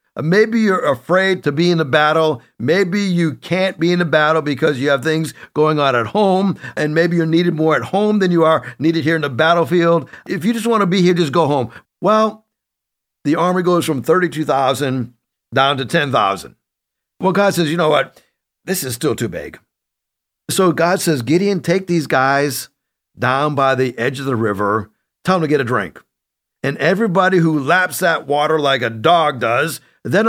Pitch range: 145-185 Hz